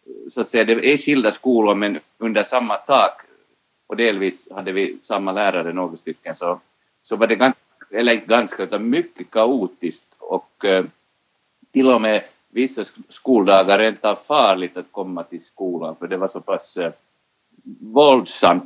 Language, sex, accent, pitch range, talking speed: Swedish, male, Finnish, 110-150 Hz, 155 wpm